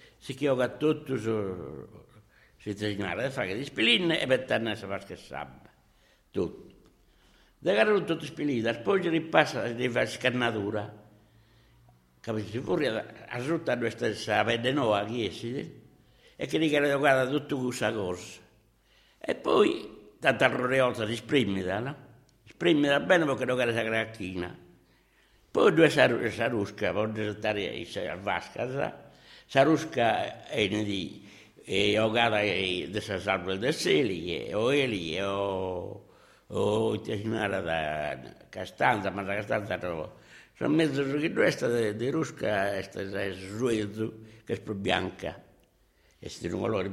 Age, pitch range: 60-79, 100-130 Hz